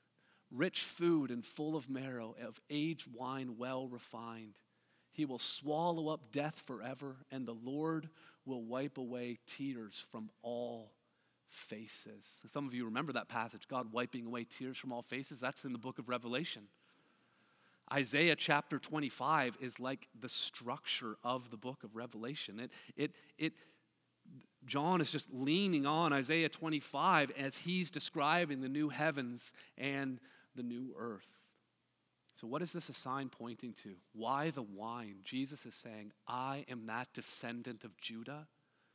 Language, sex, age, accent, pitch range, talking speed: English, male, 40-59, American, 120-145 Hz, 150 wpm